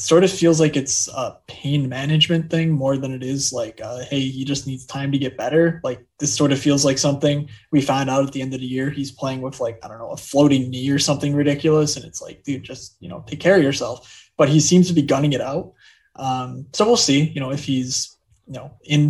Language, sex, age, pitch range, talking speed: English, male, 20-39, 130-150 Hz, 260 wpm